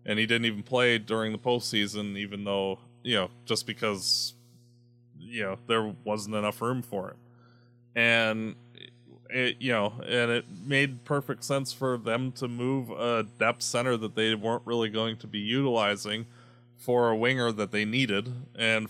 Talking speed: 165 wpm